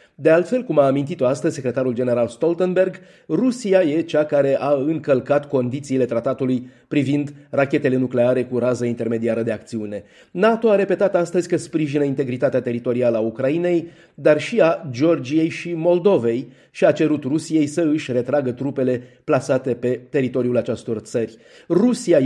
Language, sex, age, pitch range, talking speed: Romanian, male, 30-49, 125-170 Hz, 150 wpm